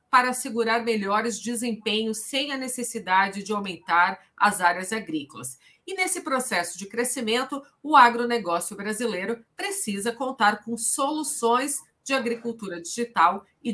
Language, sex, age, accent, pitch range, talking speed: Portuguese, female, 40-59, Brazilian, 185-245 Hz, 120 wpm